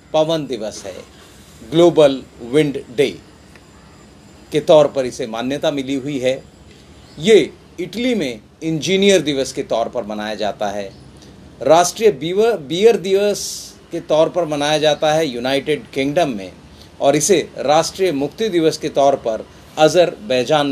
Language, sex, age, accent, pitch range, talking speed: Hindi, male, 40-59, native, 140-205 Hz, 135 wpm